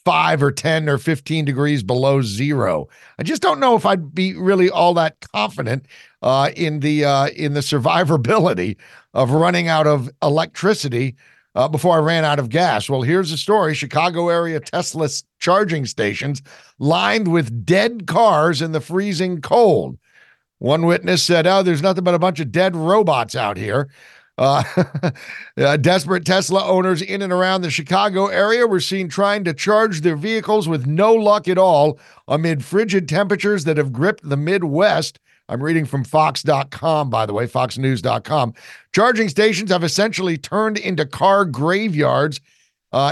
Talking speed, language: 165 wpm, English